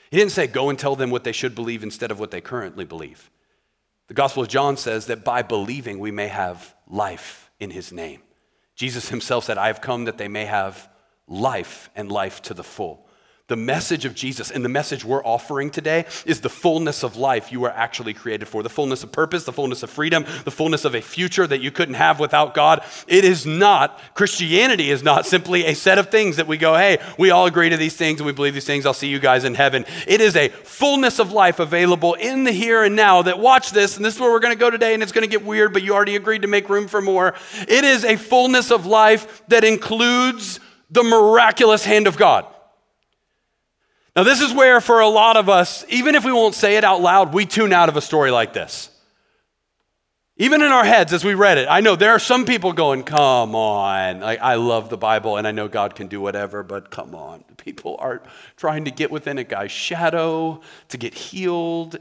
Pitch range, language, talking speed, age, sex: 130-210 Hz, English, 230 wpm, 40-59, male